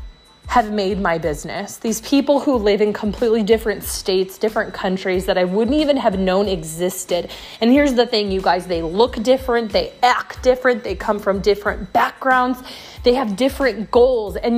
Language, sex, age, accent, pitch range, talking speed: English, female, 20-39, American, 200-255 Hz, 175 wpm